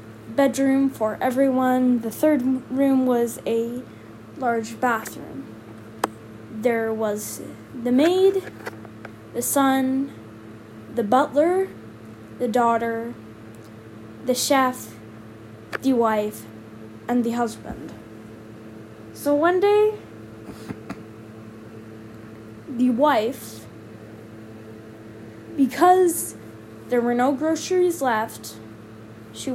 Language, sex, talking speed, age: English, female, 80 wpm, 10-29